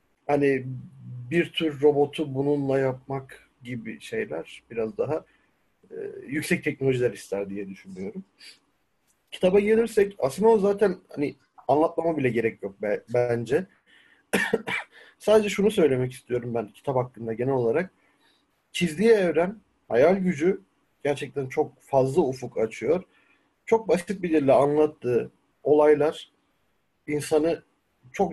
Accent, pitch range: native, 125-180 Hz